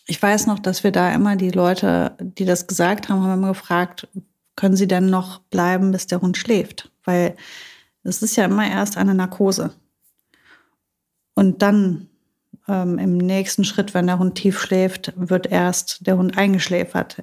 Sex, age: female, 30-49